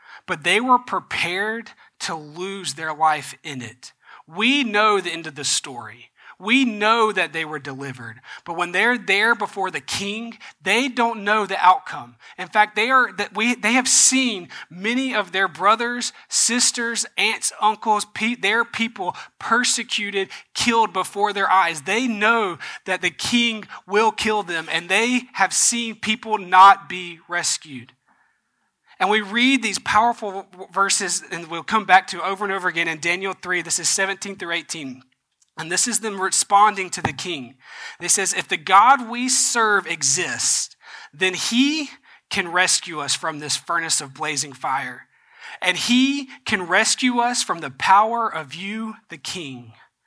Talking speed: 160 wpm